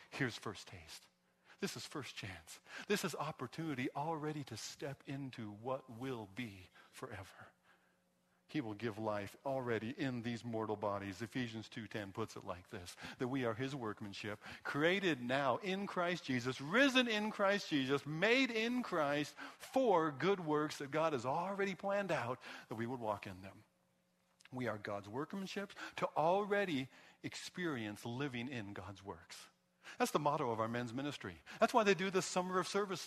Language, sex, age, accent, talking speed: English, male, 50-69, American, 165 wpm